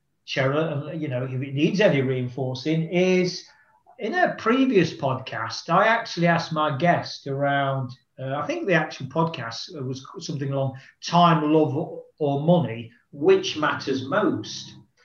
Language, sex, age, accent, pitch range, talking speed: English, male, 40-59, British, 140-195 Hz, 140 wpm